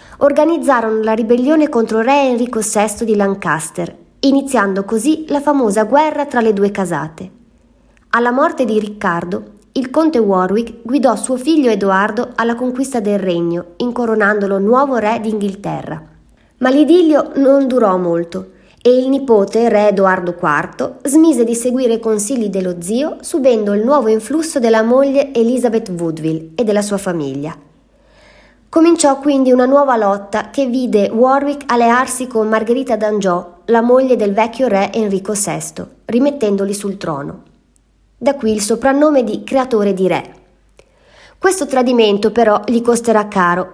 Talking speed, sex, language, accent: 140 wpm, female, Italian, native